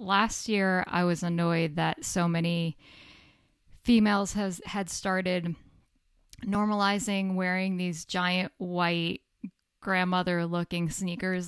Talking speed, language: 100 wpm, English